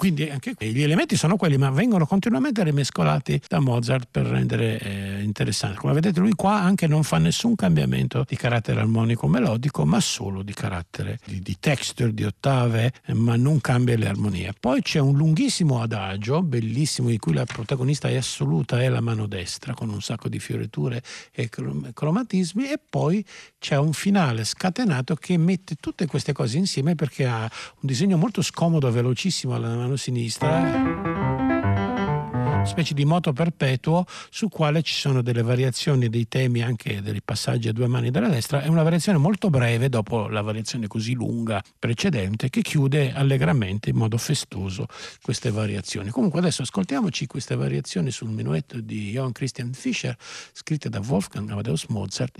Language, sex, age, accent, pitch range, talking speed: Italian, male, 50-69, native, 110-155 Hz, 165 wpm